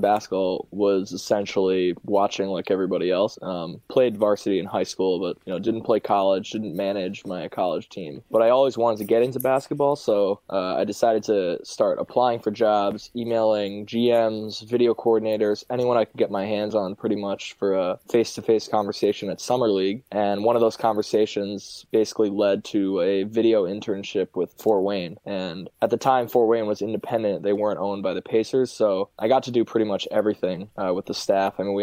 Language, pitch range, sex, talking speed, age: English, 100-115 Hz, male, 200 wpm, 20-39